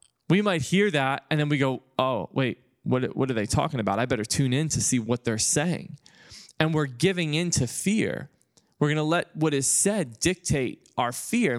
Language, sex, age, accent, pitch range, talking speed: English, male, 20-39, American, 130-160 Hz, 210 wpm